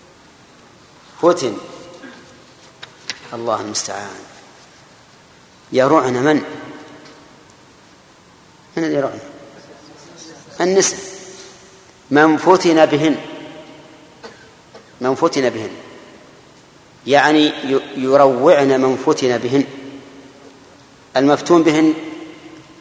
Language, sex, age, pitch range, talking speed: Arabic, male, 50-69, 135-160 Hz, 55 wpm